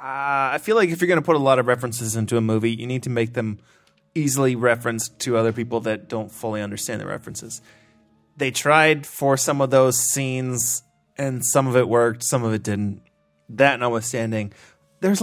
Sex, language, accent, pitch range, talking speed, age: male, English, American, 115-145 Hz, 200 wpm, 20-39